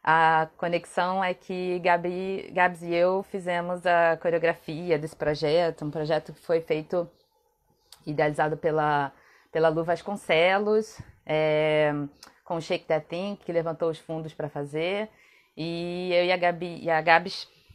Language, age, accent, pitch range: Portuguese, 20-39, Brazilian, 155-185 Hz